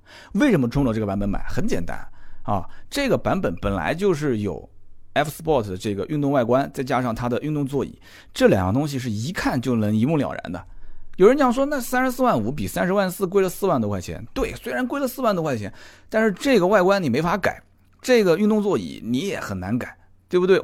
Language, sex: Chinese, male